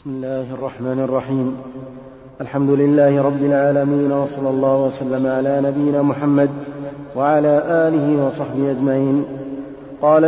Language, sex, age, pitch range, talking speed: Arabic, male, 30-49, 140-160 Hz, 110 wpm